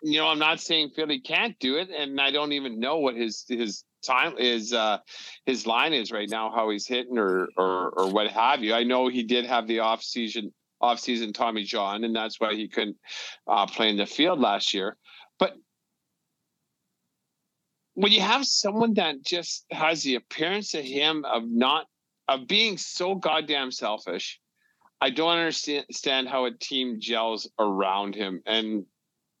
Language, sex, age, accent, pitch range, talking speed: English, male, 40-59, American, 110-140 Hz, 175 wpm